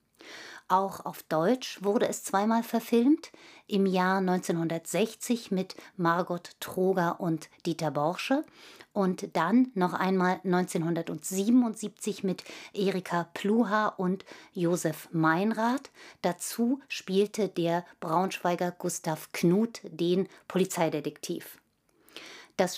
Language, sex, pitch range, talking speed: German, female, 170-215 Hz, 95 wpm